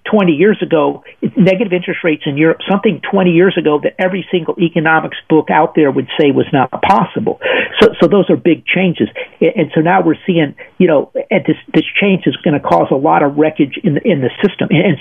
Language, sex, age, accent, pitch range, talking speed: English, male, 50-69, American, 155-195 Hz, 210 wpm